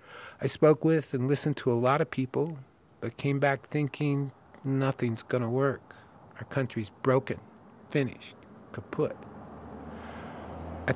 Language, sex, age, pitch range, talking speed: English, male, 50-69, 120-145 Hz, 130 wpm